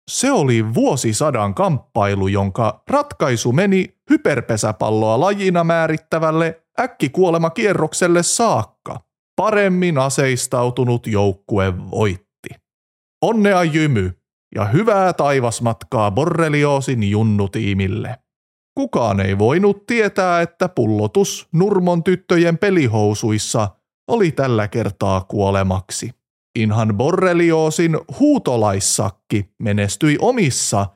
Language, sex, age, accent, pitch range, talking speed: Finnish, male, 30-49, native, 105-180 Hz, 85 wpm